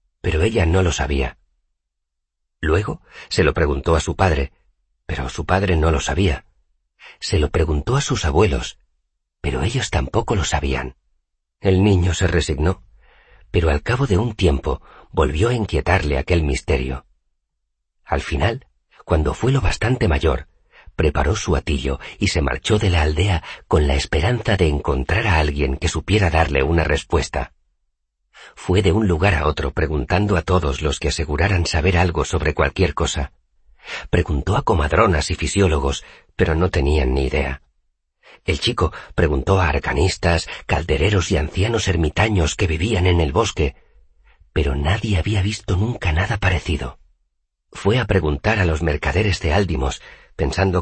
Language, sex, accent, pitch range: Spanish, male, Spanish, 70-95 Hz